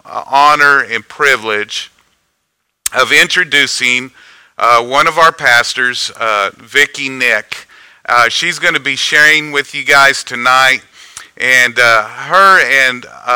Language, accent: English, American